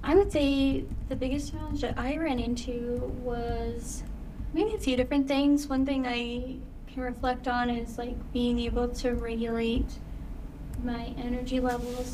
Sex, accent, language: female, American, English